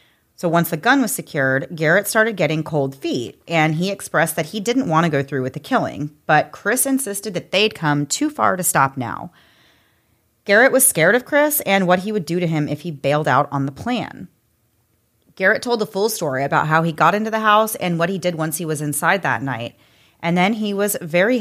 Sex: female